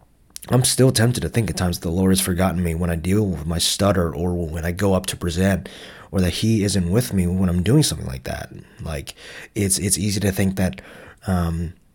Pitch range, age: 90-105 Hz, 30-49